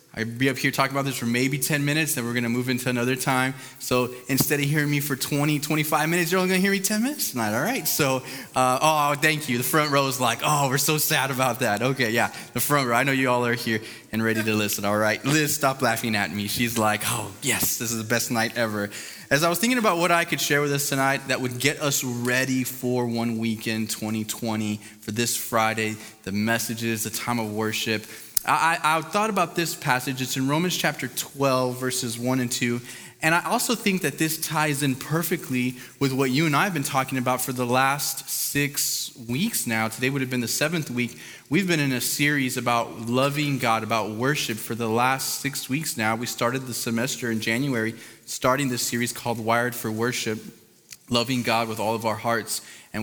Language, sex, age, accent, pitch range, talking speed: English, male, 20-39, American, 115-140 Hz, 225 wpm